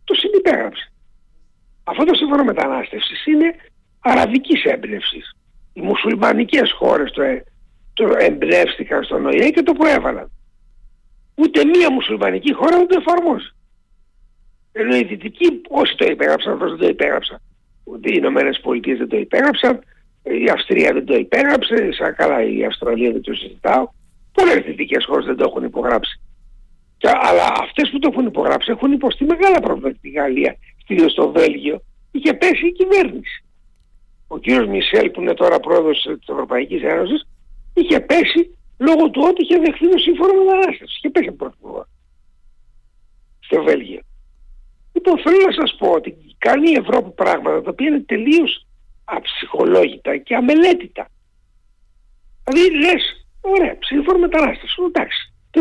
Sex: male